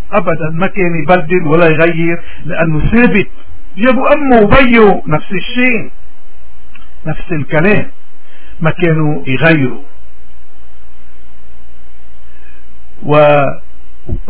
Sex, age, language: male, 60-79, Arabic